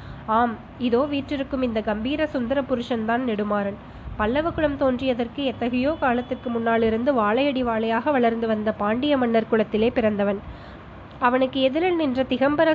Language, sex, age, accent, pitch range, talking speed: Tamil, female, 20-39, native, 230-275 Hz, 125 wpm